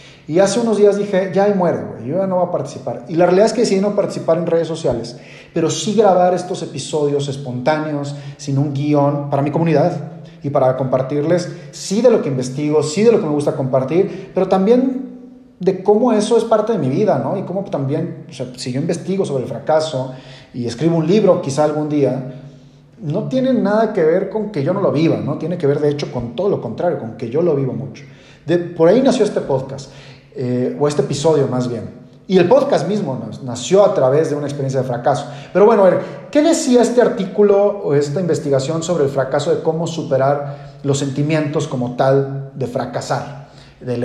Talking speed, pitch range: 215 wpm, 135-185 Hz